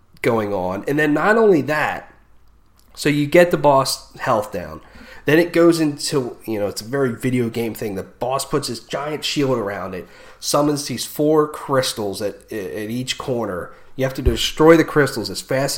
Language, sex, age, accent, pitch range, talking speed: English, male, 30-49, American, 115-160 Hz, 190 wpm